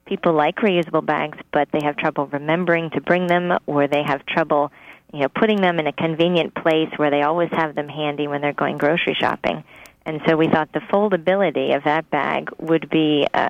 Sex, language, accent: female, English, American